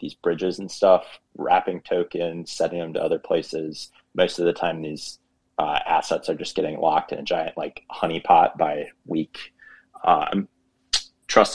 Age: 20-39